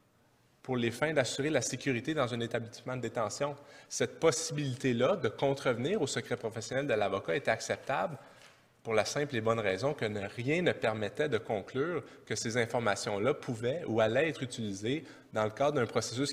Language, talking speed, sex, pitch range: English, 175 wpm, male, 110-140 Hz